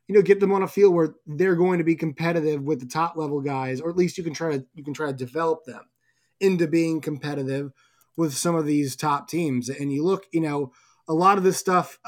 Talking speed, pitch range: 250 wpm, 150-175 Hz